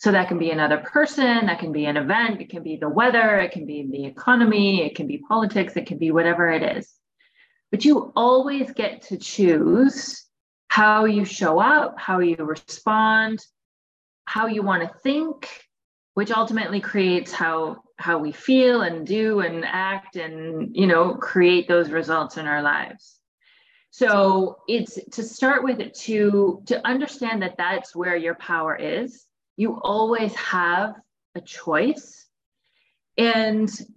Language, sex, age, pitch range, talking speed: English, female, 30-49, 170-225 Hz, 155 wpm